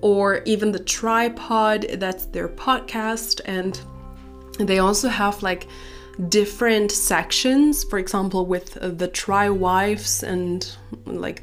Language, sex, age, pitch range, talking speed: English, female, 20-39, 180-235 Hz, 115 wpm